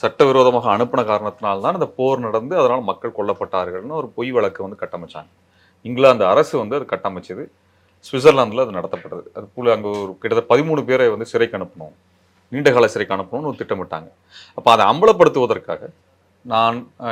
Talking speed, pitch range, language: 125 wpm, 95-130 Hz, Tamil